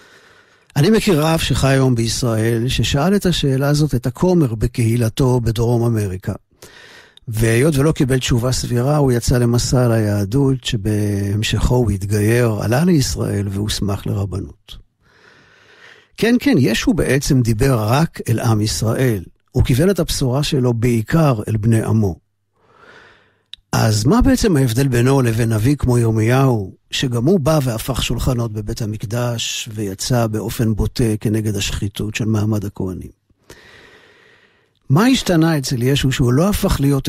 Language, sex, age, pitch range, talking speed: Hebrew, male, 50-69, 110-145 Hz, 130 wpm